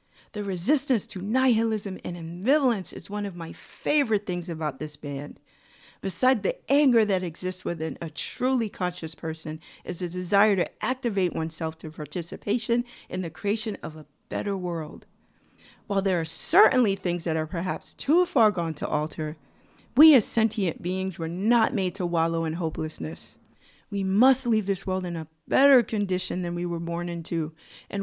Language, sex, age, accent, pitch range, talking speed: English, female, 40-59, American, 165-215 Hz, 170 wpm